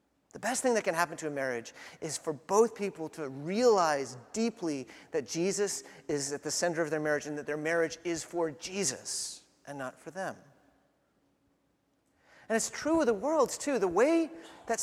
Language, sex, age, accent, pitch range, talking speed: English, male, 30-49, American, 175-250 Hz, 185 wpm